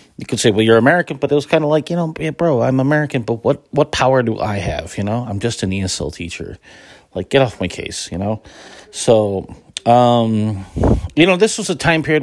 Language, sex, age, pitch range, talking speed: English, male, 30-49, 95-130 Hz, 230 wpm